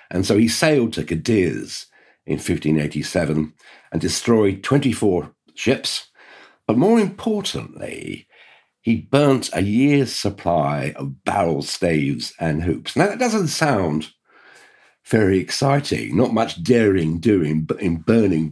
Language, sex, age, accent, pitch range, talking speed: English, male, 50-69, British, 85-130 Hz, 120 wpm